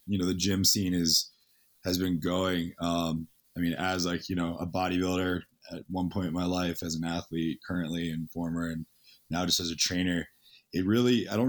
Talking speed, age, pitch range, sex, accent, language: 210 wpm, 20-39, 80-95 Hz, male, American, English